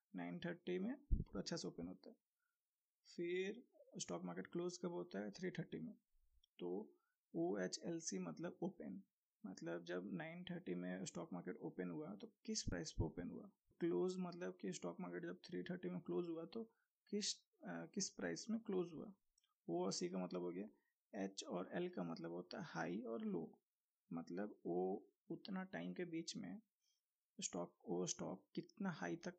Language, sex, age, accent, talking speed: Hindi, male, 20-39, native, 175 wpm